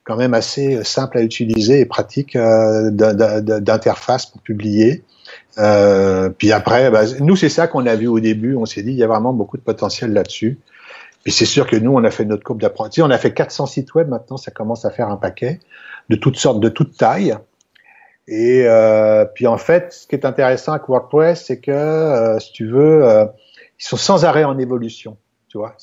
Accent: French